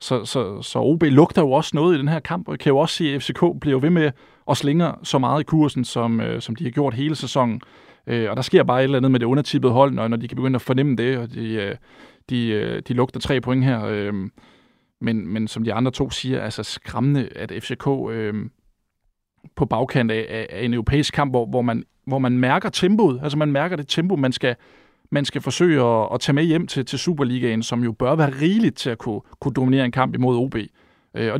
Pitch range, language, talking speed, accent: 115-145 Hz, Danish, 240 wpm, native